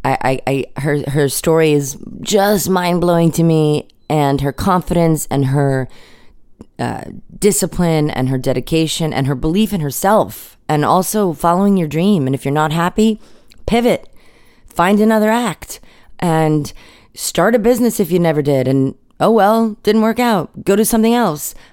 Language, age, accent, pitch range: English, 30-49, American, 150-200 Hz